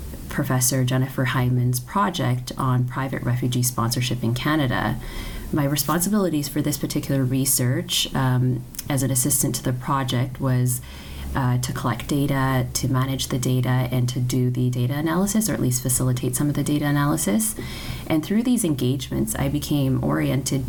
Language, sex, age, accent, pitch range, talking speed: English, female, 30-49, American, 125-145 Hz, 155 wpm